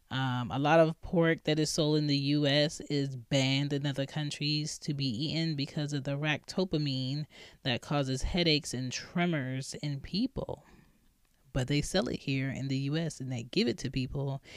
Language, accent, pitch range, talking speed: English, American, 135-165 Hz, 180 wpm